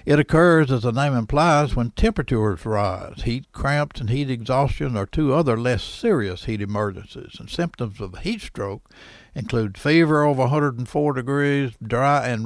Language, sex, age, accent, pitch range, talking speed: English, male, 60-79, American, 110-145 Hz, 160 wpm